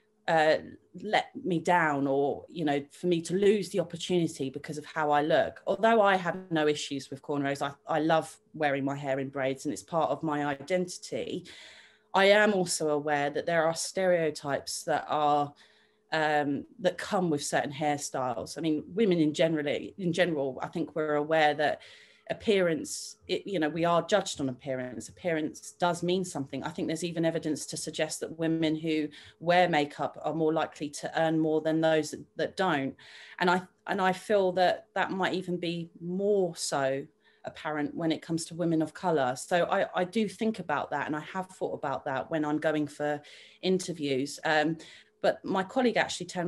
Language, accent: English, British